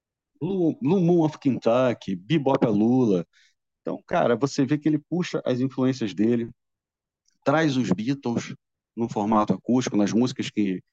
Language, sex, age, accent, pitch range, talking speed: Portuguese, male, 40-59, Brazilian, 105-140 Hz, 135 wpm